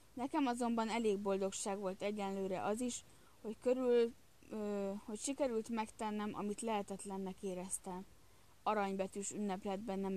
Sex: female